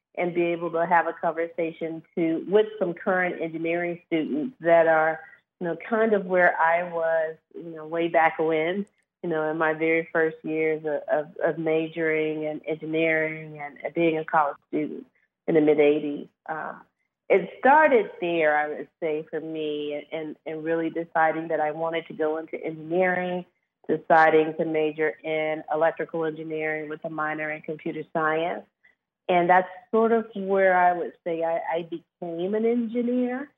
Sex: female